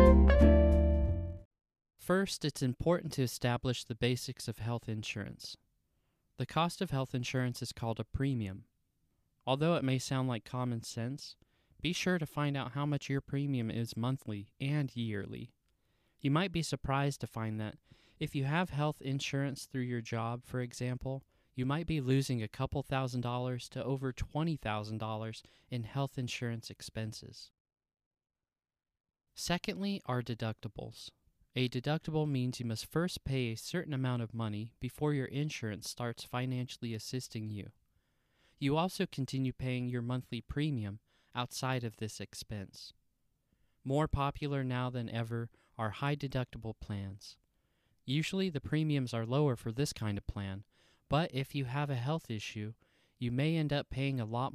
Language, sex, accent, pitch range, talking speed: English, male, American, 110-140 Hz, 155 wpm